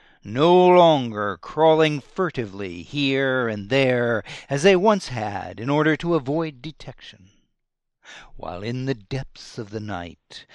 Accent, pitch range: American, 120-175 Hz